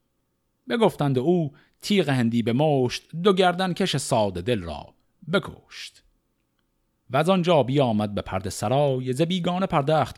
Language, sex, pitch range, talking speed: Persian, male, 105-150 Hz, 135 wpm